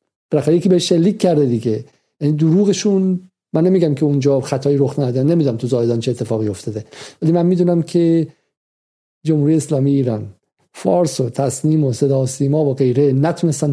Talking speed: 165 wpm